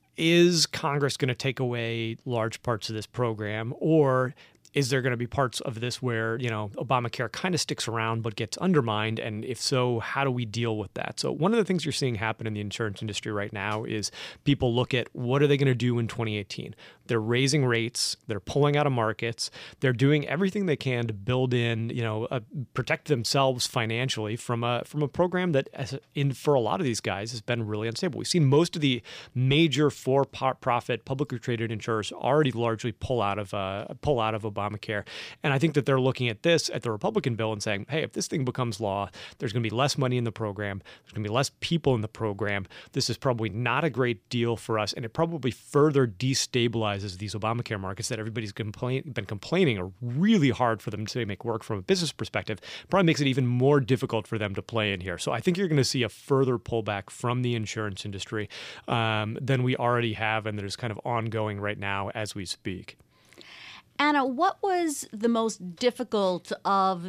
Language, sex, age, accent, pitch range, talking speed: English, male, 30-49, American, 110-140 Hz, 220 wpm